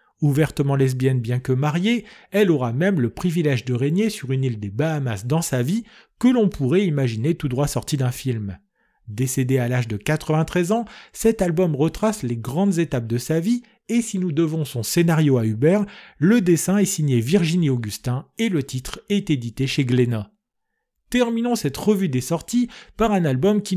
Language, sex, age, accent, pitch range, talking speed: French, male, 40-59, French, 125-185 Hz, 185 wpm